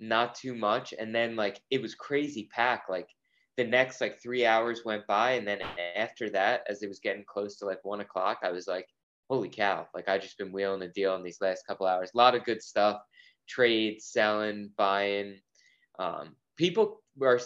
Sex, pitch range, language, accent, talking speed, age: male, 95-120 Hz, English, American, 205 wpm, 20-39